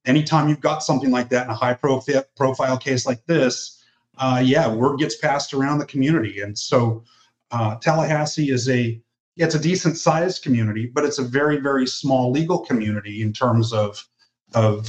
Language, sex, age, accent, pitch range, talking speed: English, male, 30-49, American, 115-140 Hz, 175 wpm